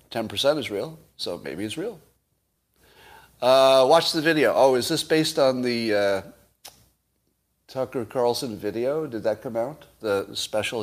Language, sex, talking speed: English, male, 150 wpm